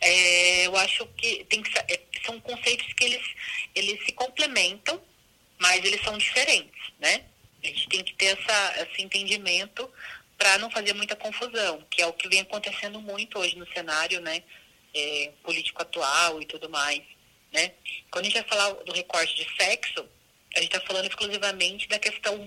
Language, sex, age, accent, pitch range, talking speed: Portuguese, female, 30-49, Brazilian, 165-205 Hz, 175 wpm